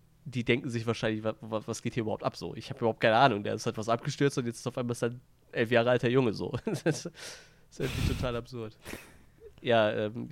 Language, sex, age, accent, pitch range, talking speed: German, male, 20-39, German, 110-125 Hz, 240 wpm